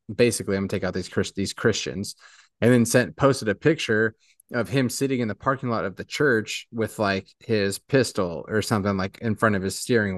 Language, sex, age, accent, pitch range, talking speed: English, male, 30-49, American, 105-130 Hz, 220 wpm